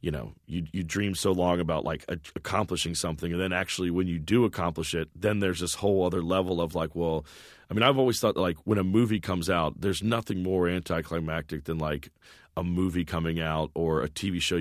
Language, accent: English, American